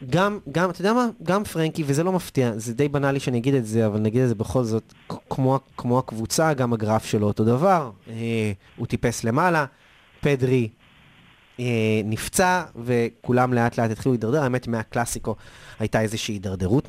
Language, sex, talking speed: Hebrew, male, 170 wpm